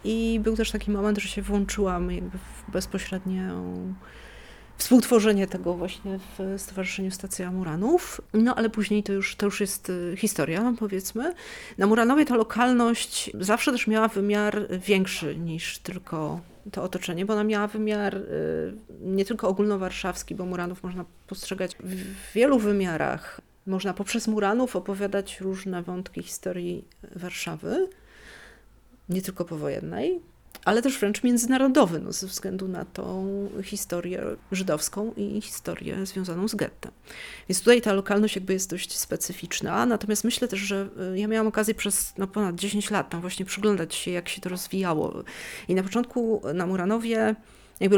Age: 40-59